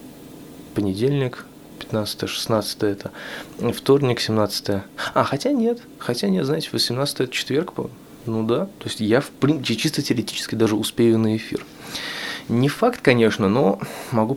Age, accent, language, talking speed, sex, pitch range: 20-39, native, Russian, 135 wpm, male, 105-130 Hz